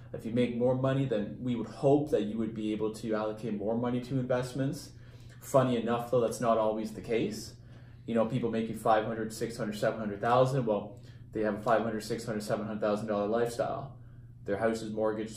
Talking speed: 190 wpm